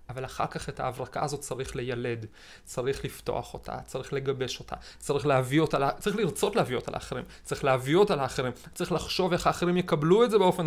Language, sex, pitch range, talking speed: Hebrew, male, 135-180 Hz, 190 wpm